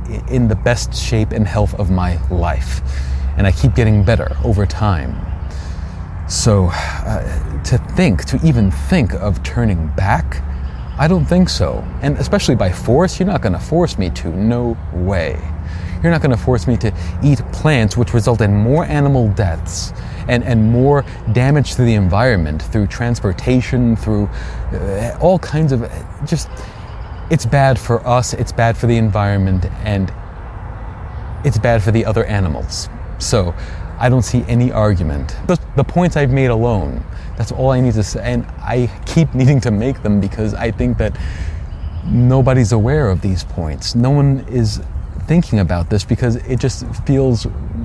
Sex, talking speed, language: male, 165 wpm, English